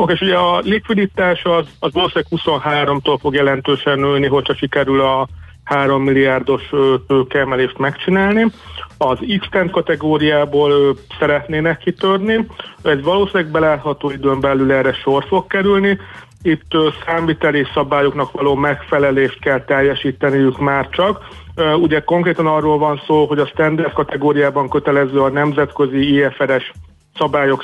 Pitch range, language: 135-155 Hz, Hungarian